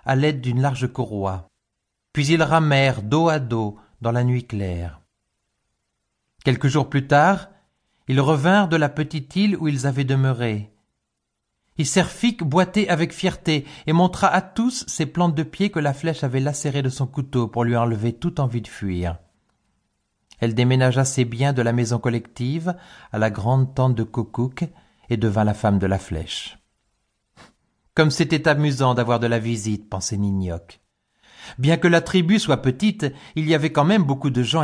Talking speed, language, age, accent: 175 wpm, French, 40-59, French